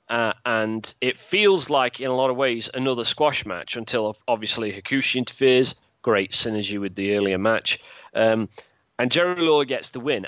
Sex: male